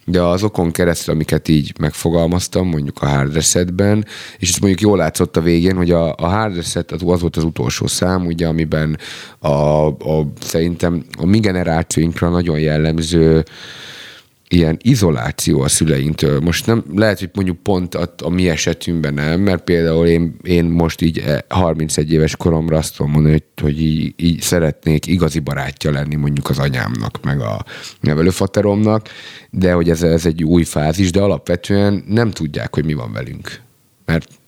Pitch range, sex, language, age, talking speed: 80-95 Hz, male, Hungarian, 30-49, 165 wpm